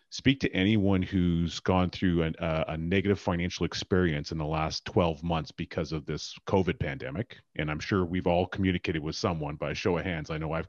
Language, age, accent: English, 30-49, American